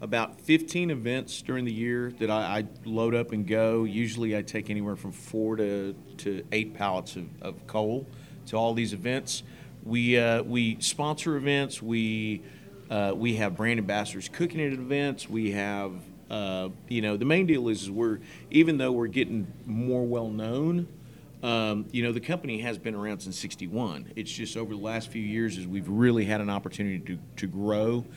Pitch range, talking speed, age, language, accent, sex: 105-125 Hz, 185 wpm, 40-59, English, American, male